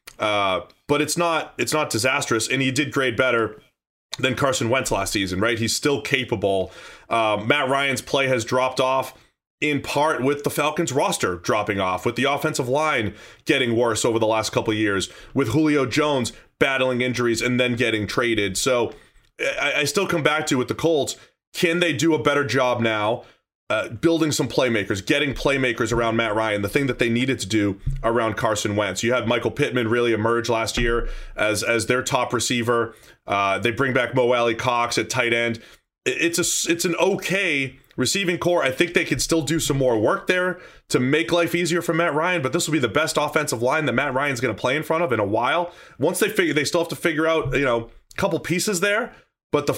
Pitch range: 115-155 Hz